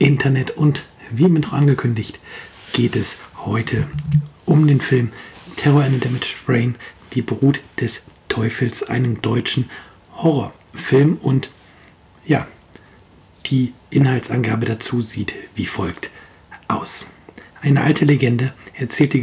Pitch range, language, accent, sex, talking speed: 115-140 Hz, German, German, male, 115 wpm